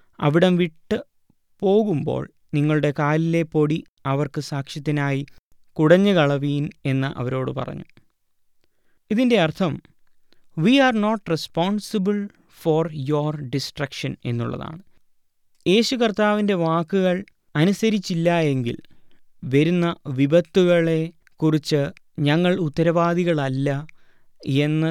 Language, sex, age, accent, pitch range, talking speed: Malayalam, male, 20-39, native, 140-170 Hz, 75 wpm